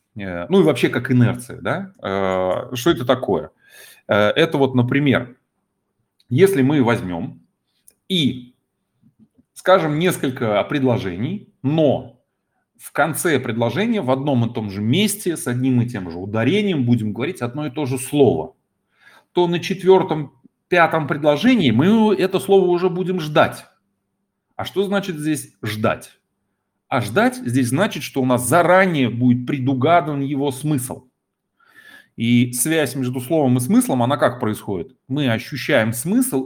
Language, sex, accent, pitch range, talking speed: Russian, male, native, 120-160 Hz, 135 wpm